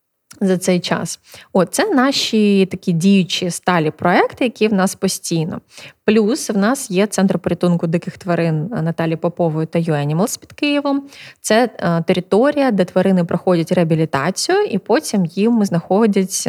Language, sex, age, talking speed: Ukrainian, female, 20-39, 145 wpm